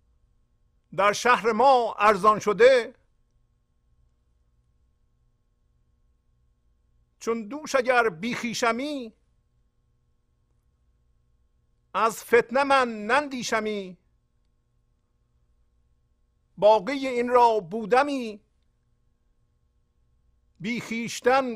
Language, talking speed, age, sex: Persian, 50 wpm, 50-69, male